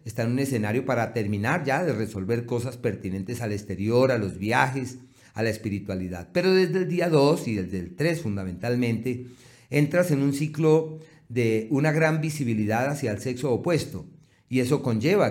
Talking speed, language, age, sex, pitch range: 175 wpm, Spanish, 40-59, male, 115-150 Hz